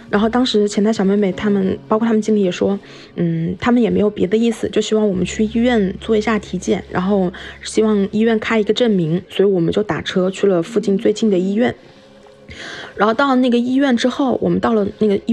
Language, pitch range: Chinese, 195-230 Hz